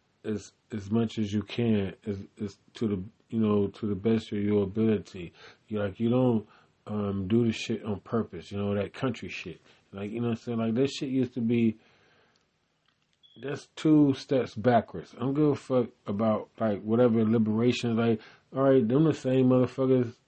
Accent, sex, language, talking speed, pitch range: American, male, English, 185 wpm, 115-155 Hz